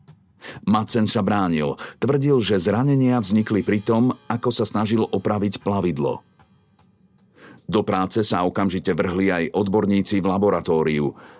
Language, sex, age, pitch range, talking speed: Slovak, male, 50-69, 95-115 Hz, 120 wpm